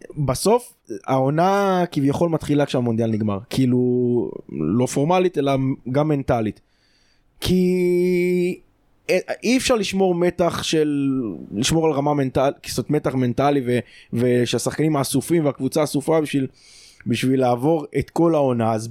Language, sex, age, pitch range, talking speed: Hebrew, male, 20-39, 120-160 Hz, 115 wpm